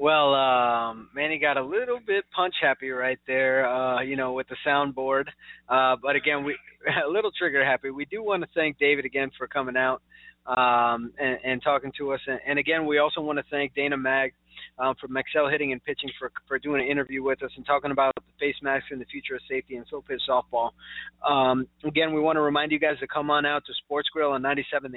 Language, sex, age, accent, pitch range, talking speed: English, male, 20-39, American, 130-155 Hz, 225 wpm